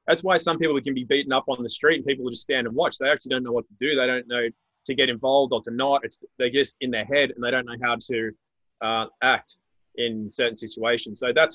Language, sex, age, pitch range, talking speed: English, male, 20-39, 120-145 Hz, 275 wpm